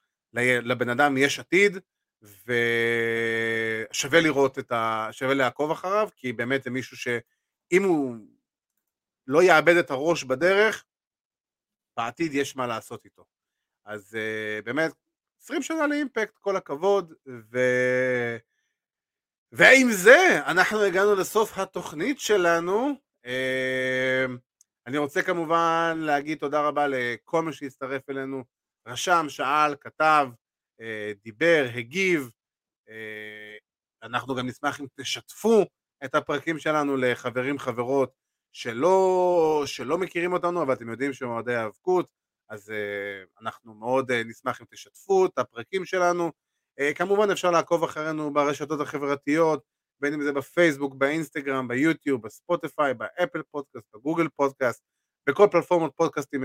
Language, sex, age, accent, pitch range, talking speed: Hebrew, male, 30-49, native, 125-170 Hz, 120 wpm